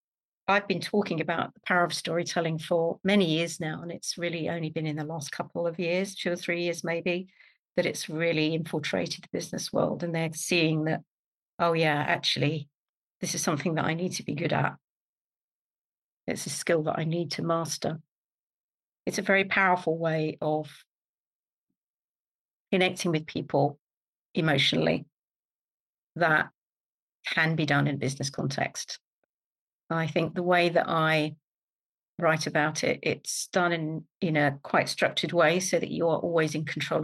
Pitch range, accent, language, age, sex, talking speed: 155-175 Hz, British, English, 50-69, female, 165 wpm